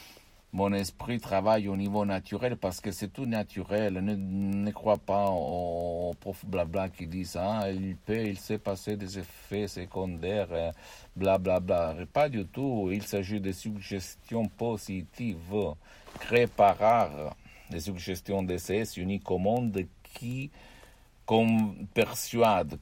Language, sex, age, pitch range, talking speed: Italian, male, 60-79, 85-100 Hz, 135 wpm